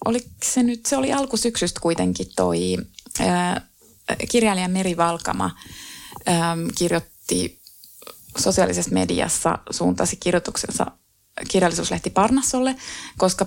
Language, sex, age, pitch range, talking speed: Finnish, female, 20-39, 170-230 Hz, 85 wpm